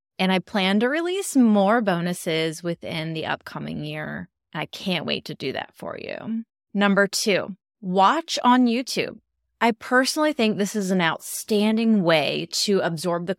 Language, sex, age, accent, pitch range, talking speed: English, female, 30-49, American, 170-210 Hz, 155 wpm